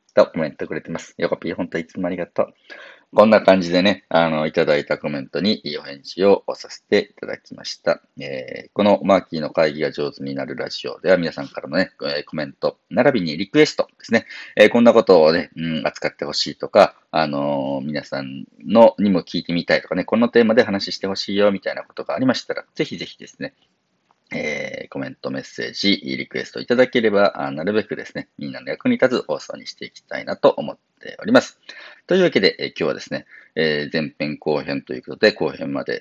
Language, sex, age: Japanese, male, 40-59